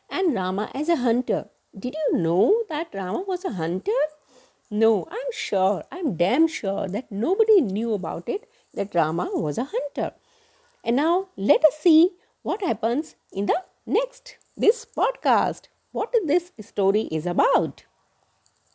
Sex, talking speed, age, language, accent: female, 155 wpm, 50-69, English, Indian